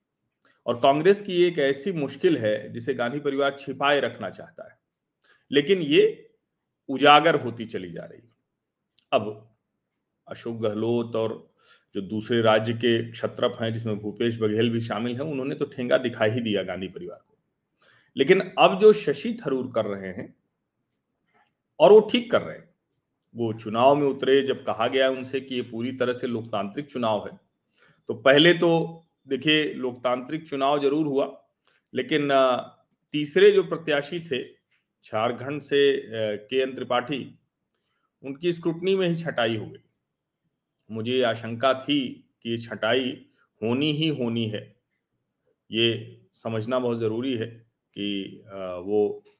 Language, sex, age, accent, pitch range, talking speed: Hindi, male, 40-59, native, 115-150 Hz, 140 wpm